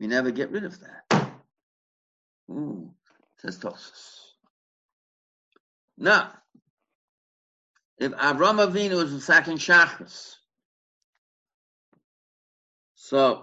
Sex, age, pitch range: male, 50-69, 120-175 Hz